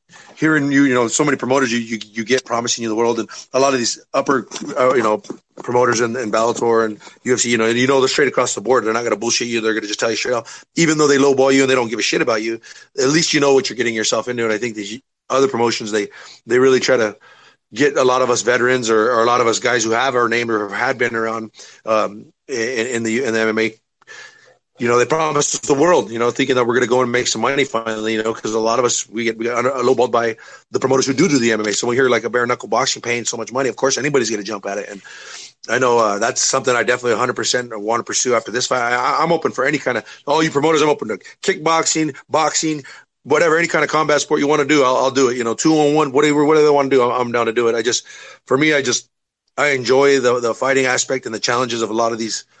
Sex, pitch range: male, 115-140 Hz